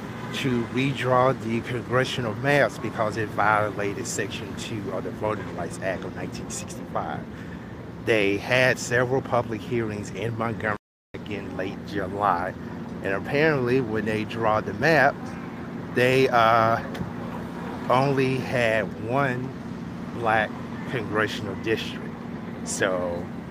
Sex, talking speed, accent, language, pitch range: male, 110 wpm, American, English, 110-130 Hz